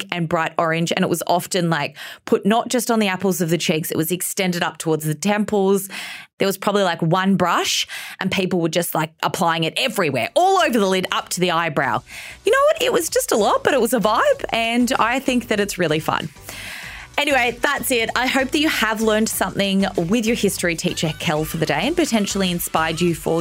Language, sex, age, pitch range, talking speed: English, female, 20-39, 175-260 Hz, 230 wpm